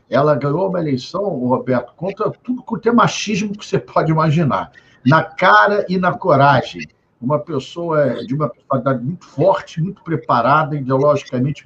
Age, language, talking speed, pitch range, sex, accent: 60-79, Portuguese, 150 wpm, 145-220 Hz, male, Brazilian